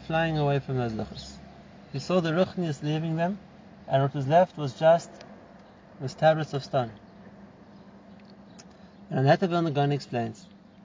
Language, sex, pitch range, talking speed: English, male, 135-195 Hz, 140 wpm